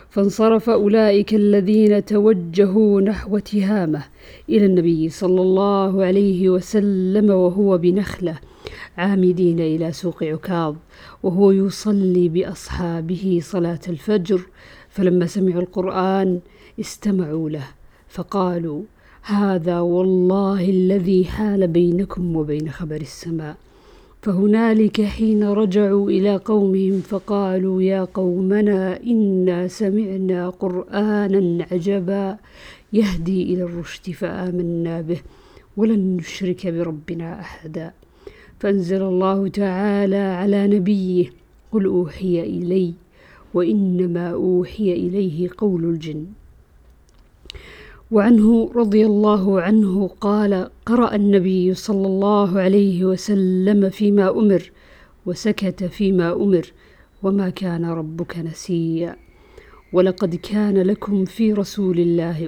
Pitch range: 180-205 Hz